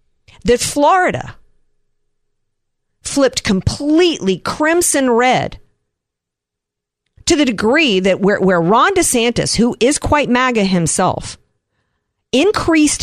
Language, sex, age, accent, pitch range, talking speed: English, female, 50-69, American, 165-245 Hz, 90 wpm